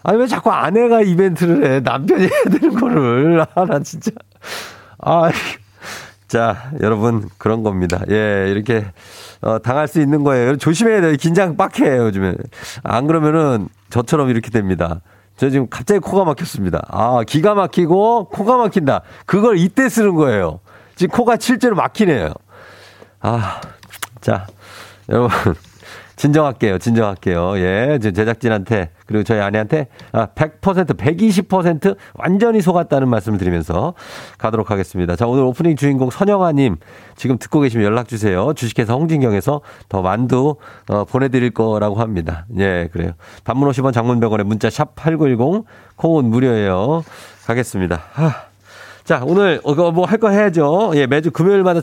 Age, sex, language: 40-59, male, Korean